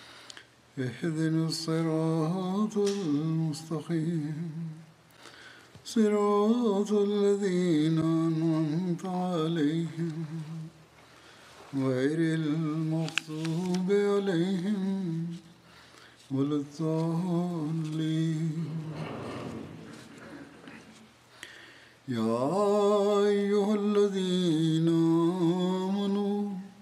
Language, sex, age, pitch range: Tamil, male, 50-69, 160-195 Hz